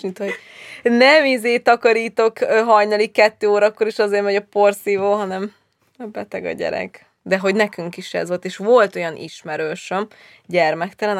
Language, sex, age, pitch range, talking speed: Hungarian, female, 20-39, 170-205 Hz, 150 wpm